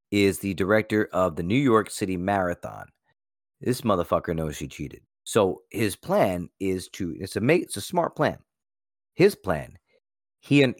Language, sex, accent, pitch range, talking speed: English, male, American, 90-125 Hz, 165 wpm